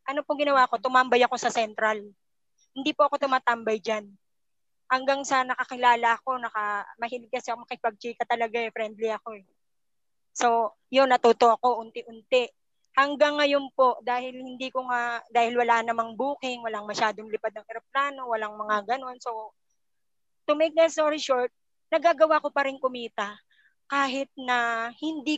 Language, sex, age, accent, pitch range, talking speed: Filipino, female, 20-39, native, 225-270 Hz, 150 wpm